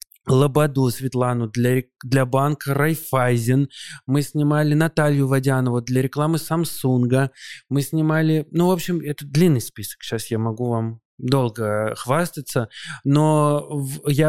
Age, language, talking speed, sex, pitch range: 20-39, Russian, 120 wpm, male, 115-135 Hz